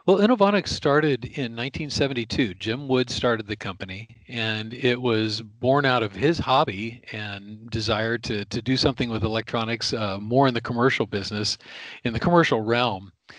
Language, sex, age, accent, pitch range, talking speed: English, male, 40-59, American, 105-125 Hz, 160 wpm